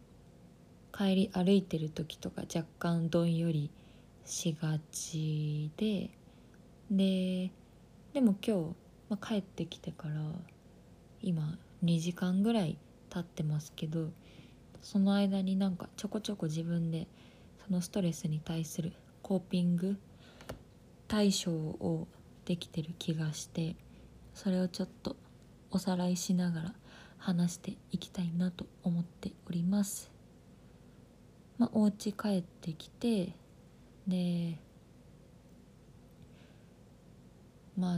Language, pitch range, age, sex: Japanese, 165-190 Hz, 20-39, female